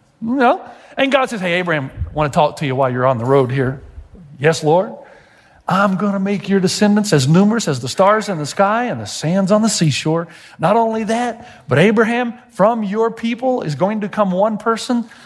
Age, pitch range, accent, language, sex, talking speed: 40-59, 175-270 Hz, American, English, male, 210 wpm